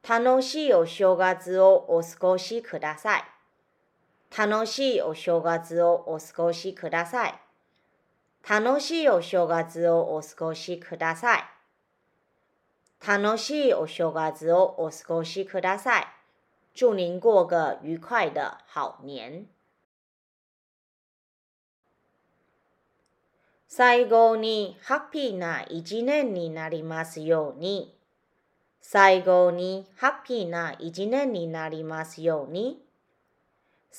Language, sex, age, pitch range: Japanese, female, 30-49, 165-235 Hz